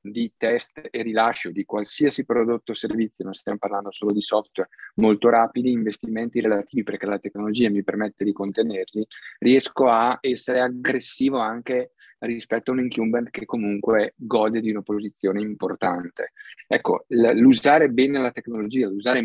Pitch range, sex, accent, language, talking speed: 105-125 Hz, male, native, Italian, 150 wpm